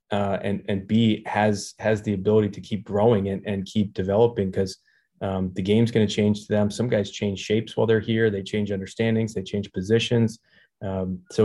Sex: male